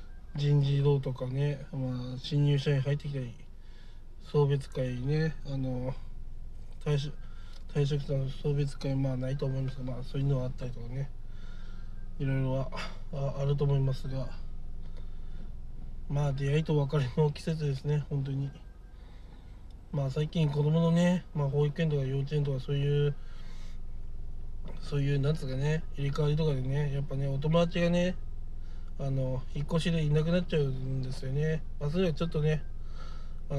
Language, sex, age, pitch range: Japanese, male, 20-39, 125-150 Hz